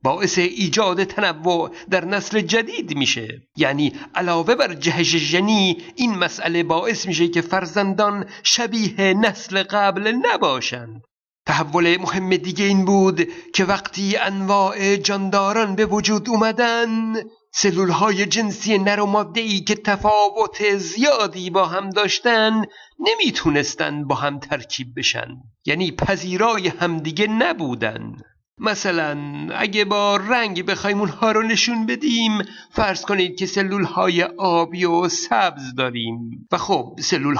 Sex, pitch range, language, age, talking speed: male, 170-210 Hz, Persian, 50-69, 120 wpm